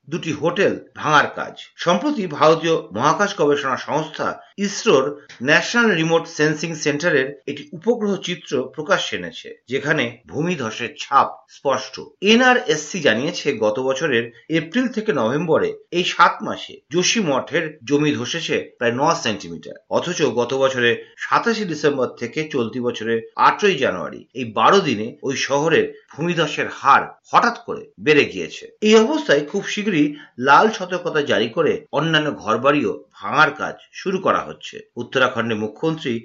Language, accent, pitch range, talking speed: Bengali, native, 130-200 Hz, 110 wpm